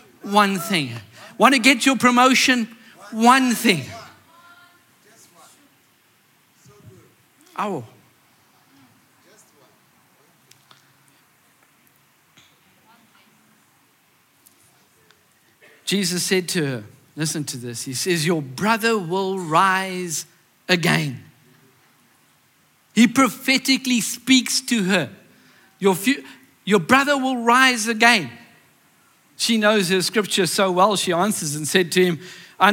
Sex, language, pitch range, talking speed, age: male, English, 180-280 Hz, 90 wpm, 50-69